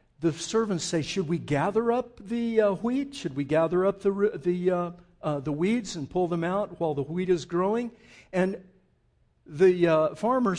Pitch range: 150-205 Hz